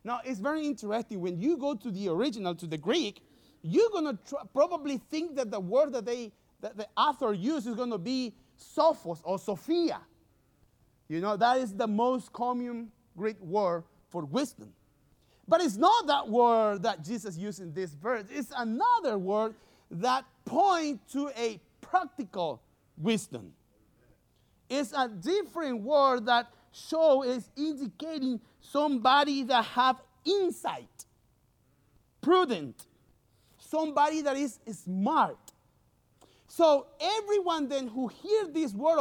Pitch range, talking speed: 175-285 Hz, 140 wpm